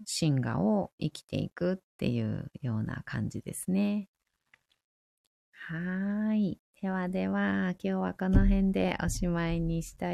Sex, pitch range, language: female, 195-250 Hz, Japanese